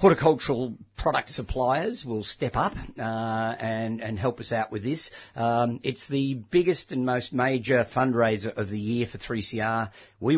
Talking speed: 175 wpm